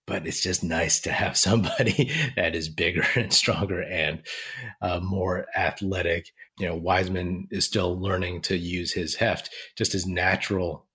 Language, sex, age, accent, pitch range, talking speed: English, male, 30-49, American, 90-110 Hz, 160 wpm